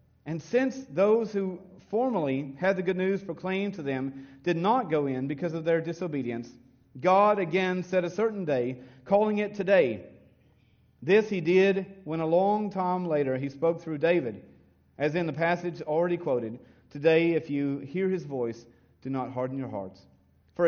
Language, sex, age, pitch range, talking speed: English, male, 40-59, 125-180 Hz, 170 wpm